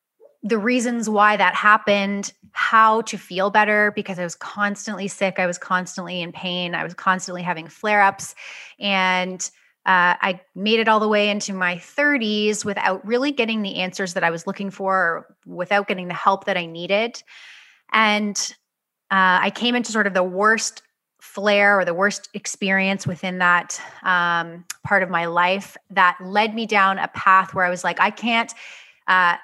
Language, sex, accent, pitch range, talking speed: English, female, American, 180-210 Hz, 175 wpm